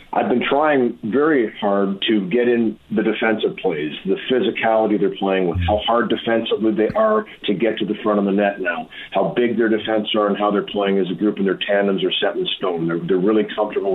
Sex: male